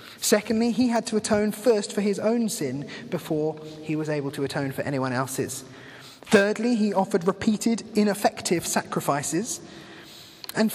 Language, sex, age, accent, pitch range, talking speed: English, male, 20-39, British, 135-185 Hz, 145 wpm